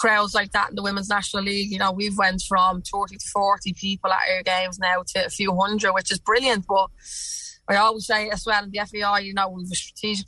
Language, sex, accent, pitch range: English, female, Irish, 190-210 Hz